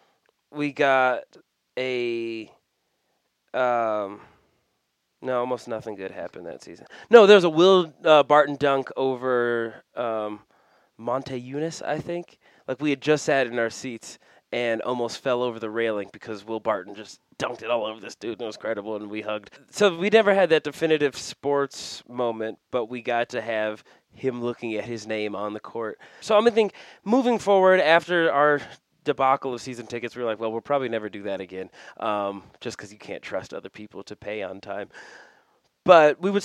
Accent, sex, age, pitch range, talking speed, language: American, male, 20-39, 110-150 Hz, 190 wpm, English